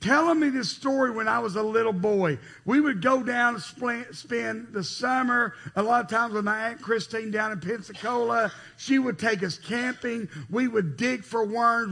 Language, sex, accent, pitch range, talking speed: English, male, American, 170-245 Hz, 195 wpm